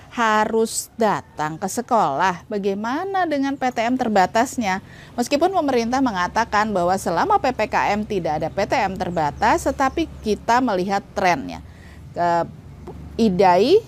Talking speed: 105 wpm